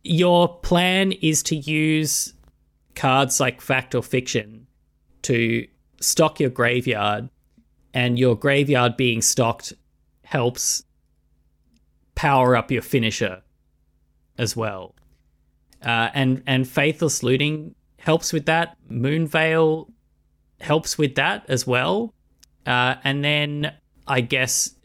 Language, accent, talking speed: English, Australian, 110 wpm